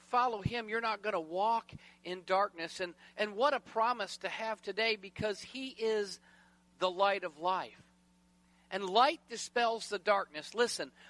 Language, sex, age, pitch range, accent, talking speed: English, male, 50-69, 155-215 Hz, American, 160 wpm